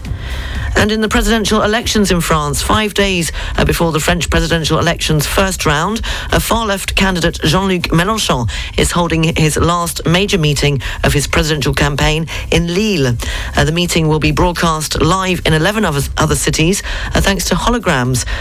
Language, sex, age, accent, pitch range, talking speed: English, female, 40-59, British, 140-185 Hz, 165 wpm